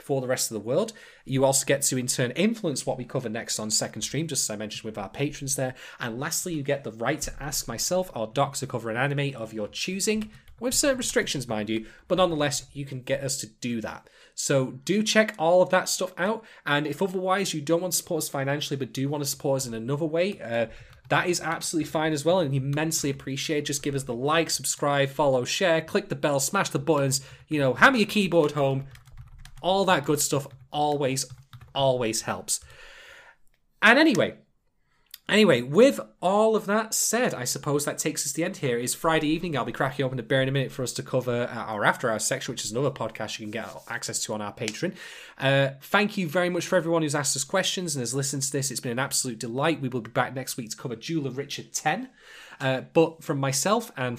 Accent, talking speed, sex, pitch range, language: British, 230 wpm, male, 125-165 Hz, English